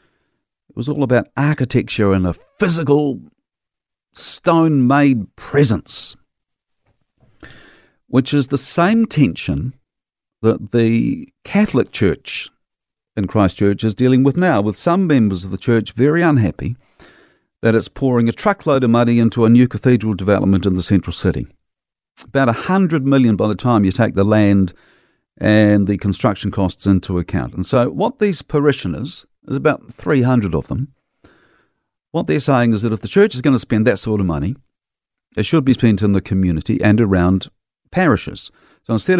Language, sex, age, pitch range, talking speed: English, male, 50-69, 100-135 Hz, 160 wpm